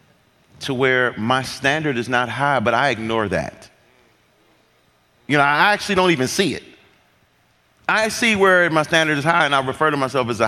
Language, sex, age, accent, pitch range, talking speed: English, male, 30-49, American, 115-145 Hz, 190 wpm